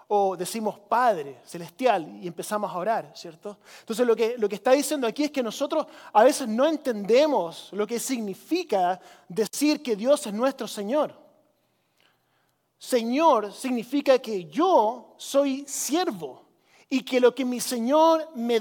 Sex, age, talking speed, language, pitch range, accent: male, 30-49, 150 wpm, Spanish, 220-290 Hz, Argentinian